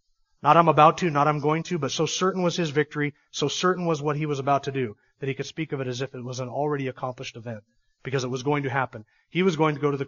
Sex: male